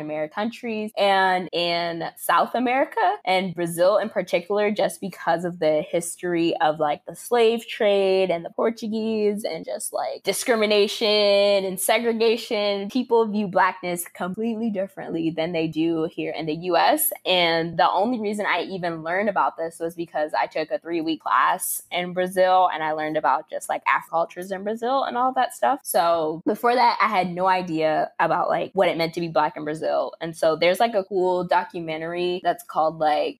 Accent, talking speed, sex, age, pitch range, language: American, 180 wpm, female, 10-29, 160-205 Hz, English